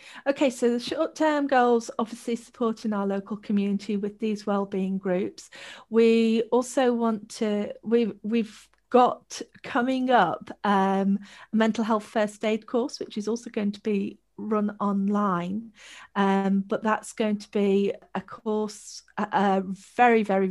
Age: 40-59